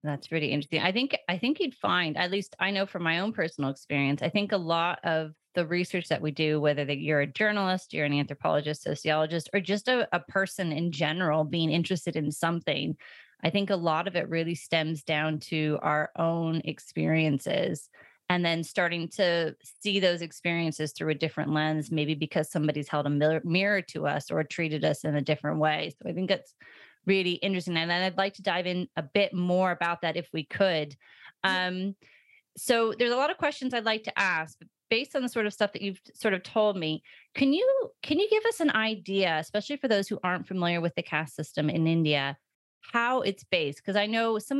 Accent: American